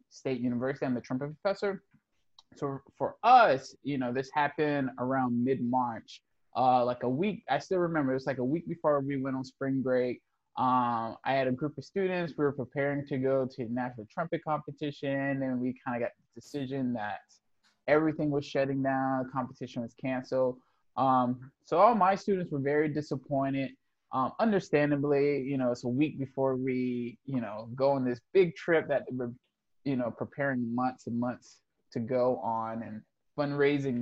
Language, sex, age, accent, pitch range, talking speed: English, male, 20-39, American, 125-150 Hz, 175 wpm